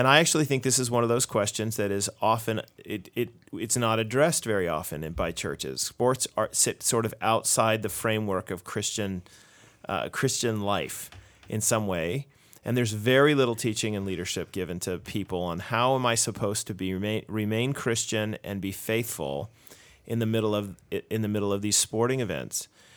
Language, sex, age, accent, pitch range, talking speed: English, male, 30-49, American, 100-125 Hz, 190 wpm